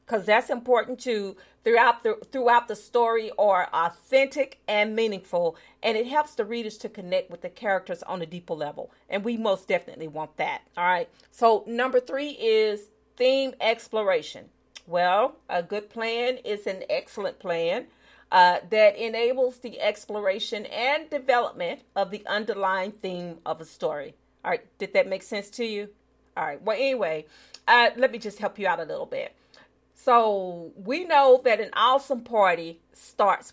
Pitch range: 180-245 Hz